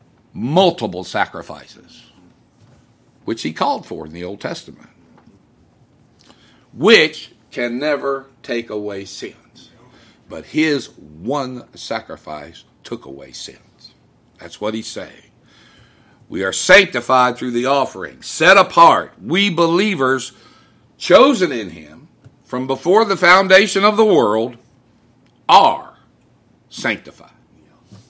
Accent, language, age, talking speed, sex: American, English, 60-79, 105 wpm, male